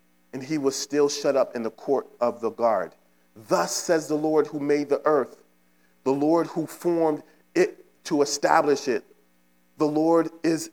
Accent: American